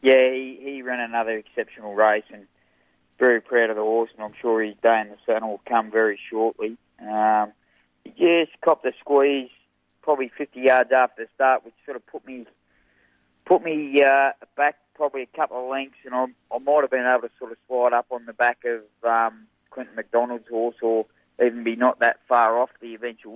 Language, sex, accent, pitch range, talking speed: English, male, Australian, 110-130 Hz, 205 wpm